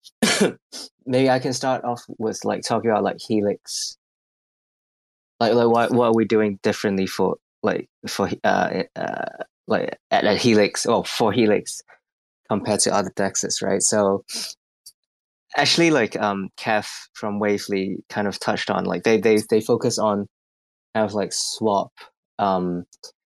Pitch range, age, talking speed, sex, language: 95-115 Hz, 20-39, 150 wpm, male, English